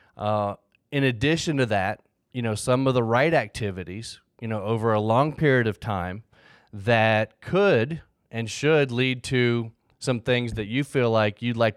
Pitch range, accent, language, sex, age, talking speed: 105-130 Hz, American, English, male, 30-49, 175 wpm